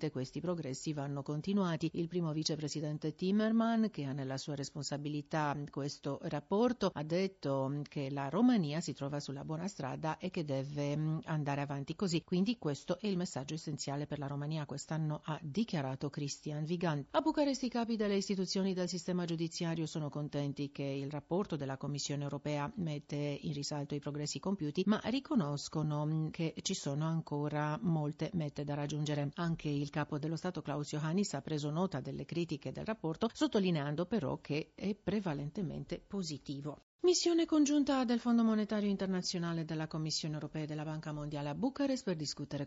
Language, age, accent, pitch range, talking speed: Italian, 50-69, native, 145-190 Hz, 165 wpm